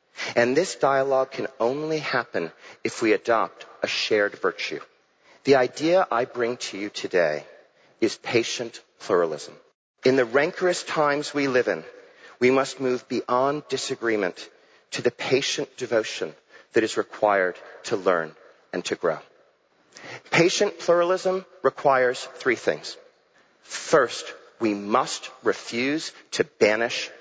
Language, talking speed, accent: English, 125 wpm, American